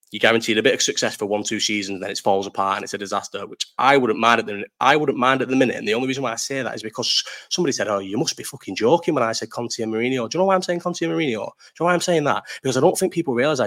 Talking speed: 340 wpm